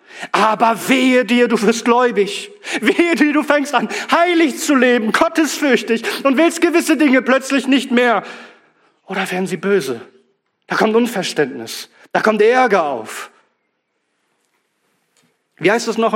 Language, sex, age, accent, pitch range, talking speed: German, male, 40-59, German, 195-260 Hz, 135 wpm